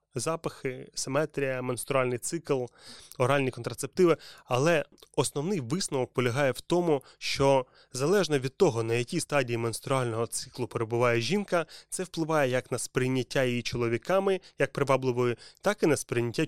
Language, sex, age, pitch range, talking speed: Ukrainian, male, 20-39, 125-160 Hz, 130 wpm